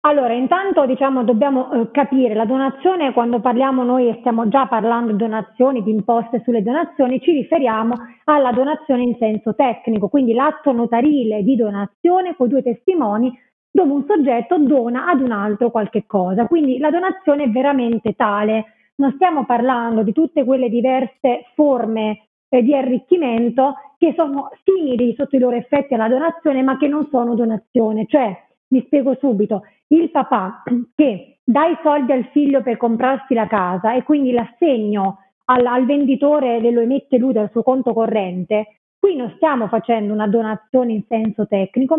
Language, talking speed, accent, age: Italian, 165 wpm, native, 30-49